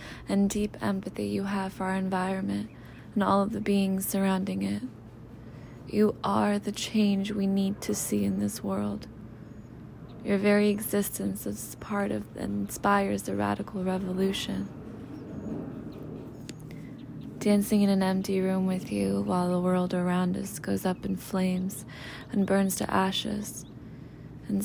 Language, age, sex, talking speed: English, 20-39, female, 140 wpm